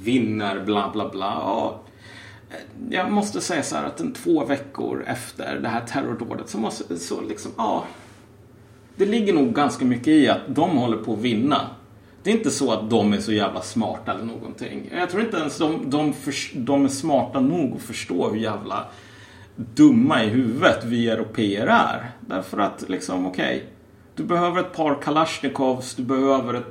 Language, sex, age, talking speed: Swedish, male, 30-49, 180 wpm